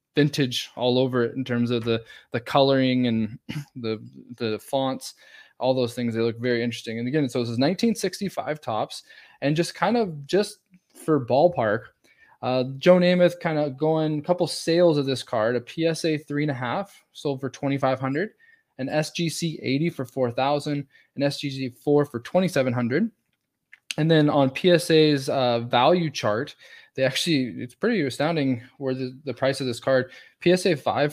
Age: 20-39